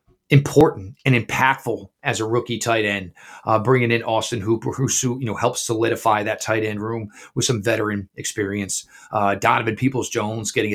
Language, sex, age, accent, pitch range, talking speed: English, male, 30-49, American, 105-120 Hz, 165 wpm